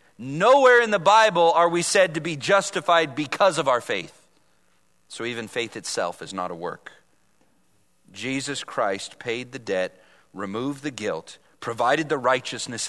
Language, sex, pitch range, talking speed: English, male, 130-205 Hz, 155 wpm